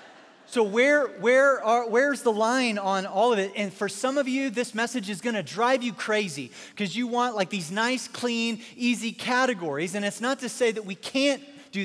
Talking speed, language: 210 wpm, English